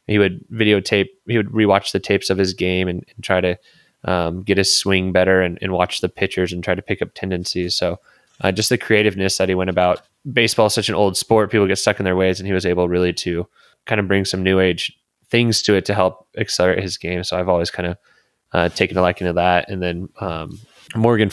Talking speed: 245 wpm